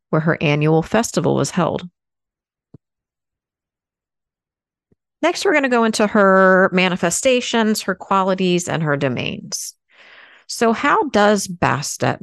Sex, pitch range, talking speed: female, 145-190 Hz, 115 wpm